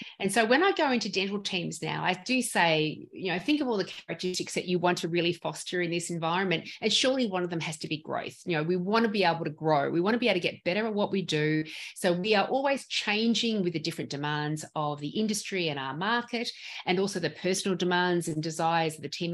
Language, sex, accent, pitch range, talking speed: English, female, Australian, 170-210 Hz, 260 wpm